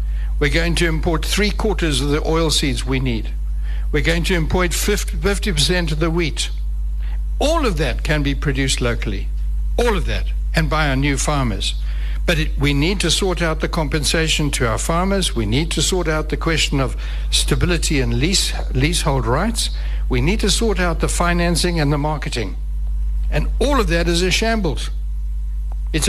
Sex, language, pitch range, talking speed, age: male, English, 120-200 Hz, 175 wpm, 60-79